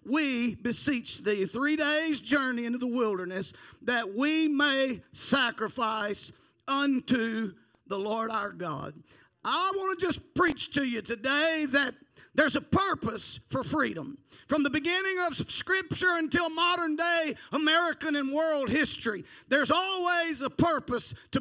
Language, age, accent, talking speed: English, 50-69, American, 135 wpm